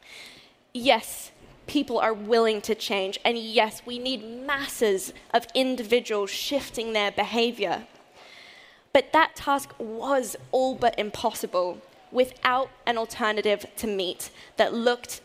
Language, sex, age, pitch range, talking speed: English, female, 10-29, 210-255 Hz, 120 wpm